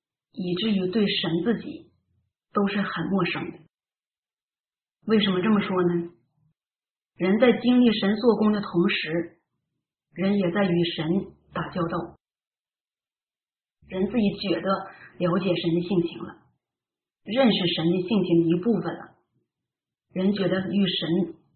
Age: 30-49